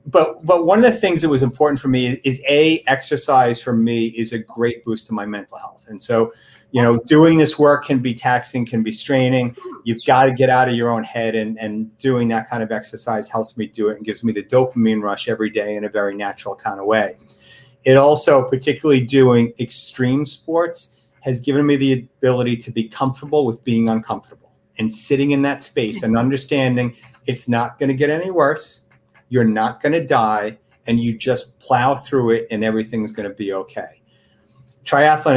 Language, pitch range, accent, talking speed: English, 115-140 Hz, American, 205 wpm